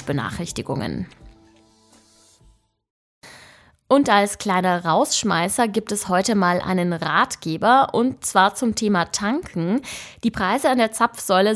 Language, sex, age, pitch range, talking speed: German, female, 20-39, 180-240 Hz, 110 wpm